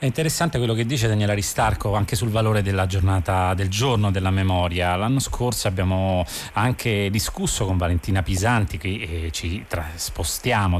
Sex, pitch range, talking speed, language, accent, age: male, 95-120 Hz, 155 wpm, Italian, native, 30-49